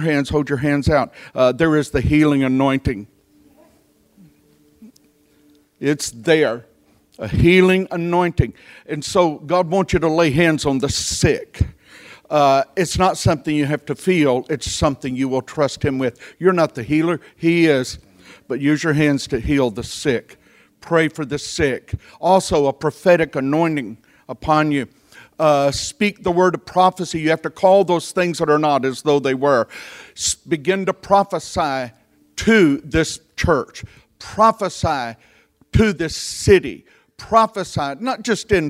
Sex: male